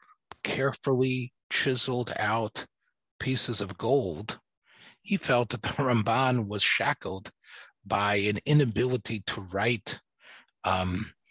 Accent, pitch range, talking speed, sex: American, 100-130 Hz, 100 wpm, male